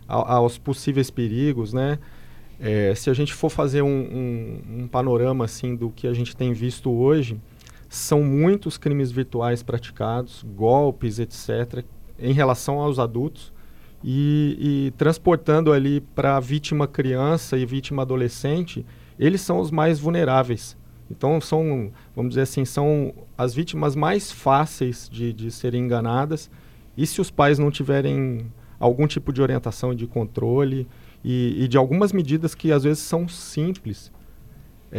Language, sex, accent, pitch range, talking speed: Portuguese, male, Brazilian, 120-150 Hz, 145 wpm